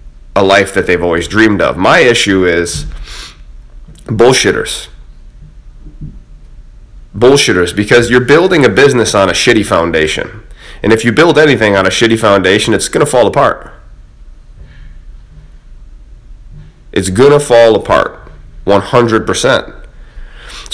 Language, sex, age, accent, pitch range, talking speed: English, male, 30-49, American, 95-125 Hz, 115 wpm